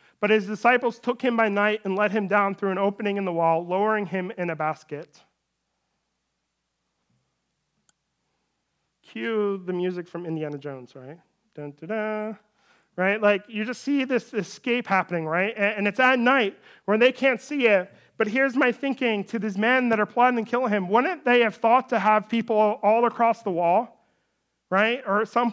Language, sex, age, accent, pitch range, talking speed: English, male, 30-49, American, 200-235 Hz, 180 wpm